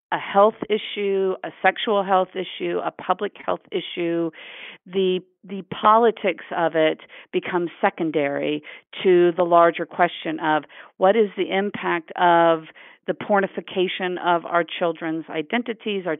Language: English